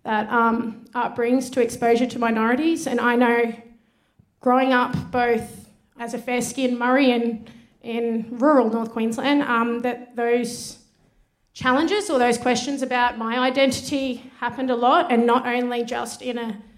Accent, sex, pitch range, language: Australian, female, 230-255 Hz, English